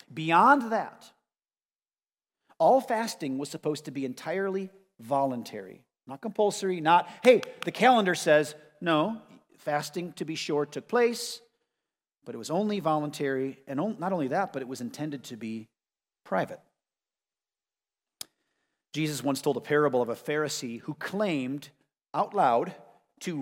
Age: 40-59